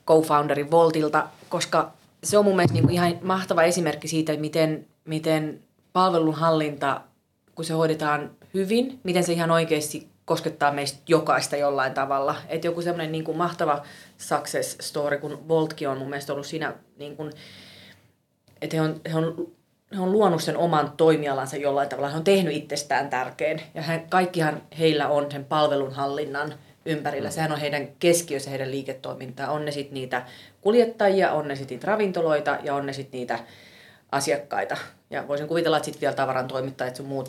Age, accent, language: 30-49, native, Finnish